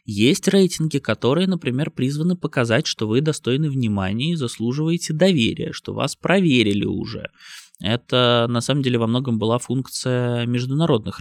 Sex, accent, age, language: male, native, 20-39, Russian